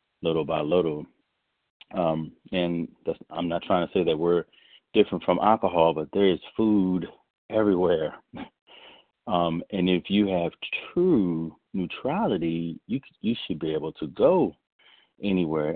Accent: American